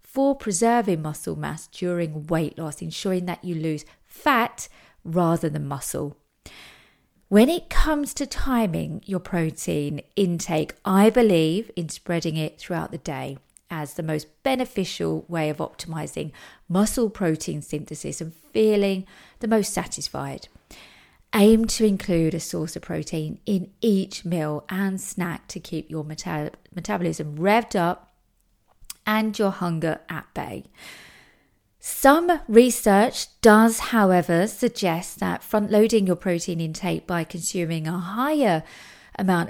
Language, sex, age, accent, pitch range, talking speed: English, female, 40-59, British, 160-210 Hz, 130 wpm